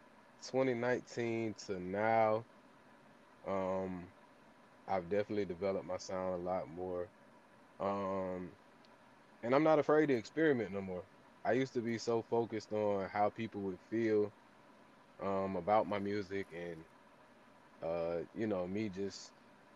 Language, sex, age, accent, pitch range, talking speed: English, male, 20-39, American, 95-115 Hz, 130 wpm